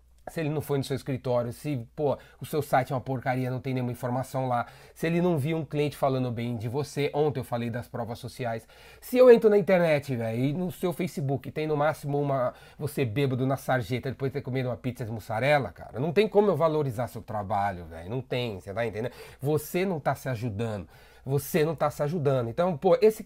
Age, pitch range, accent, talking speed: 30-49, 125-170 Hz, Brazilian, 230 wpm